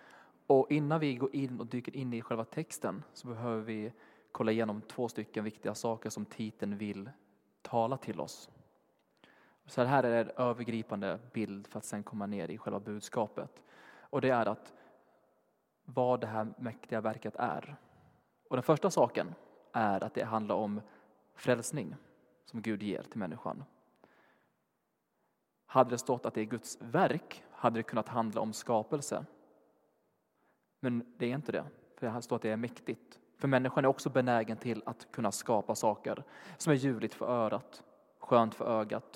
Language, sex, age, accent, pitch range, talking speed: Swedish, male, 20-39, native, 110-130 Hz, 170 wpm